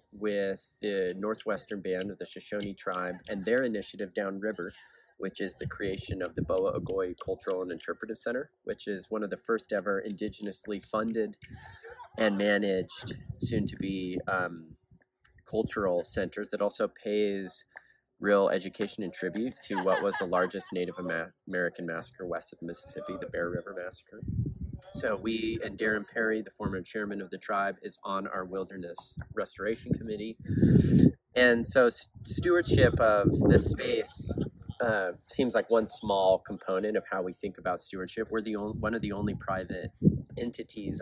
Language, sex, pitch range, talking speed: English, male, 95-110 Hz, 160 wpm